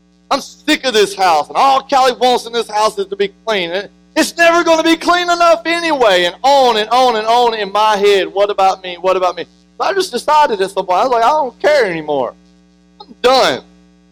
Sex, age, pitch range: male, 40-59, 170-225 Hz